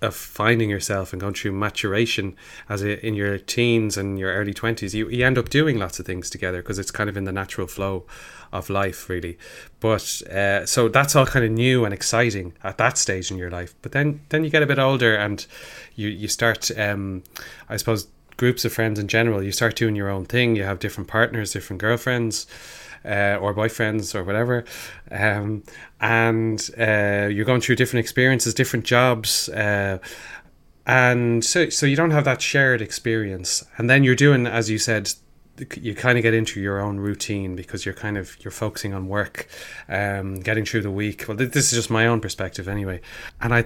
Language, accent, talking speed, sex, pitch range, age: English, Irish, 200 wpm, male, 100-120 Hz, 20-39